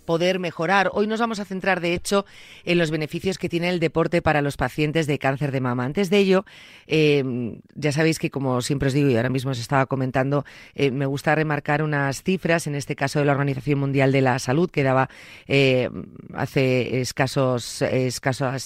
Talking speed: 200 wpm